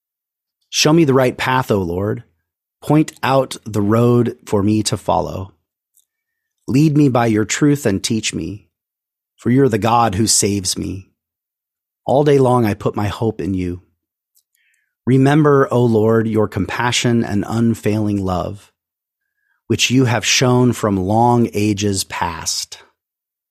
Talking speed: 140 wpm